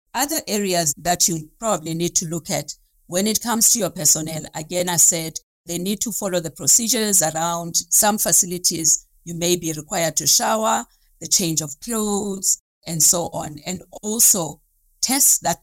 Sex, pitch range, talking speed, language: female, 165-200 Hz, 170 wpm, English